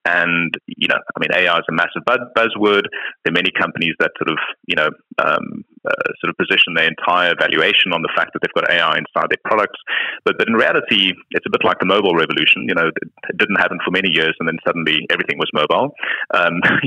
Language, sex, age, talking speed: English, male, 30-49, 225 wpm